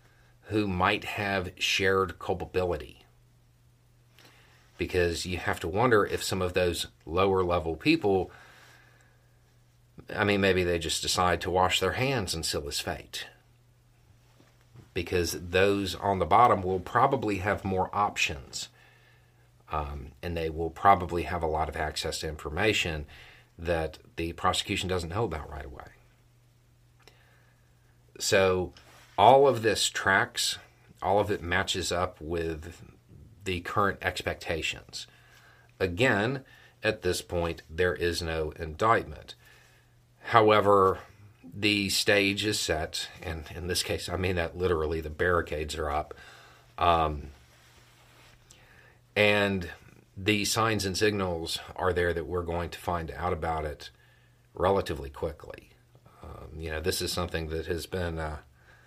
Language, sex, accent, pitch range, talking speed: English, male, American, 85-105 Hz, 130 wpm